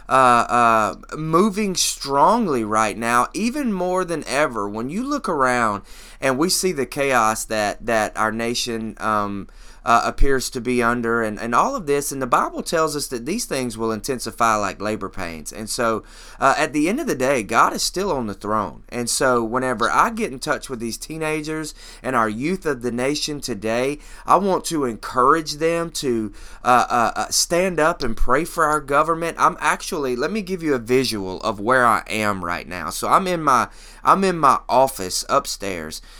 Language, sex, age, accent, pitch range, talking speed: English, male, 30-49, American, 115-150 Hz, 195 wpm